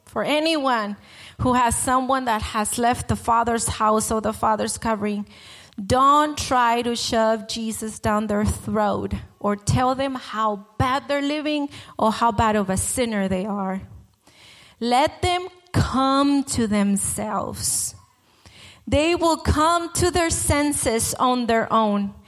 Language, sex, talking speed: English, female, 140 wpm